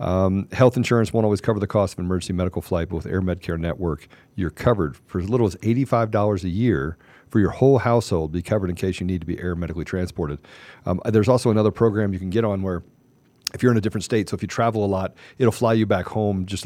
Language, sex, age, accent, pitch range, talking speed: English, male, 40-59, American, 85-115 Hz, 250 wpm